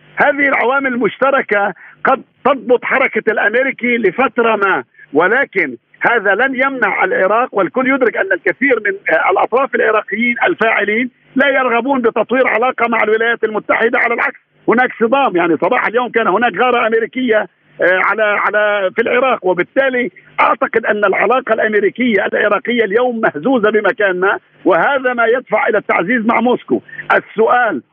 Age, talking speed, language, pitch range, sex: 50-69, 130 wpm, Arabic, 215-260 Hz, male